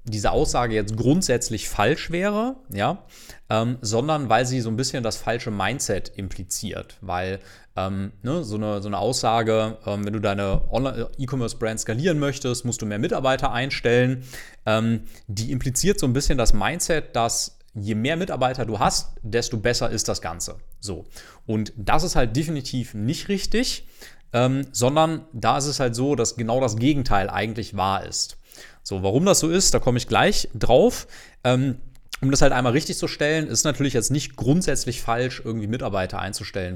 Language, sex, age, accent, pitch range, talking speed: German, male, 30-49, German, 110-135 Hz, 170 wpm